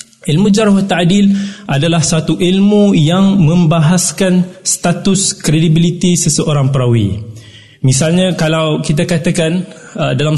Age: 20-39